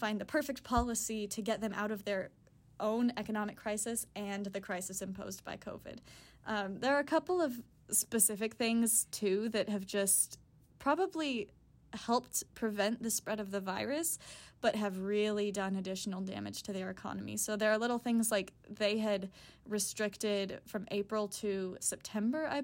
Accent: American